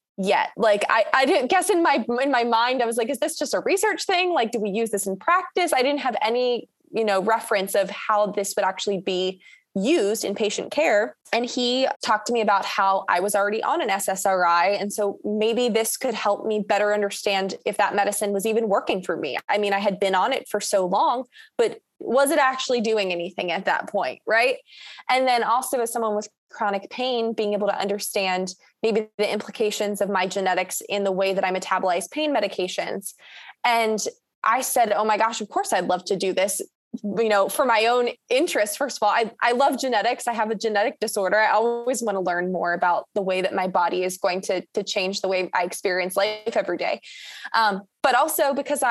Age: 20-39